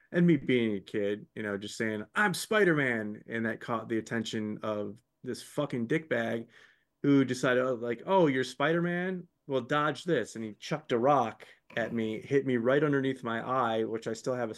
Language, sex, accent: English, male, American